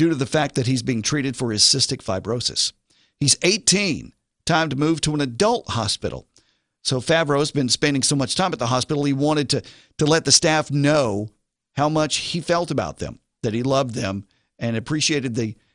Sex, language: male, English